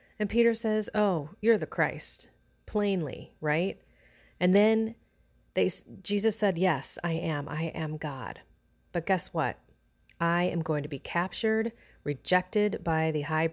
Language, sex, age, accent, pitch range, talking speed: English, female, 30-49, American, 160-205 Hz, 145 wpm